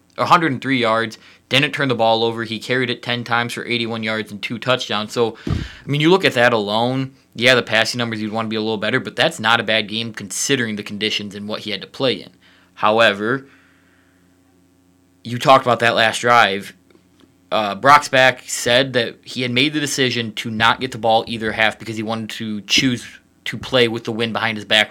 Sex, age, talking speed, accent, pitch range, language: male, 20-39, 215 wpm, American, 105-125 Hz, English